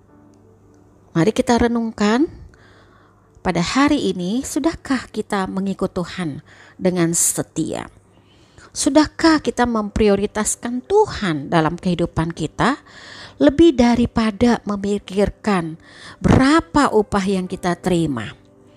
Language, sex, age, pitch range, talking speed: Indonesian, female, 40-59, 170-240 Hz, 85 wpm